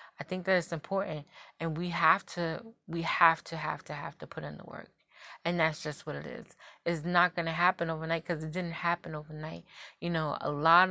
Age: 20-39